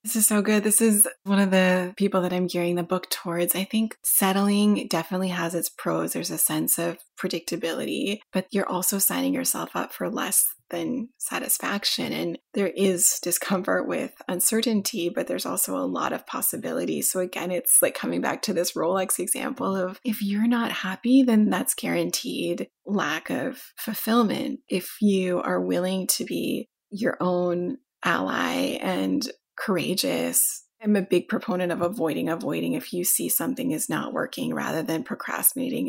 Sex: female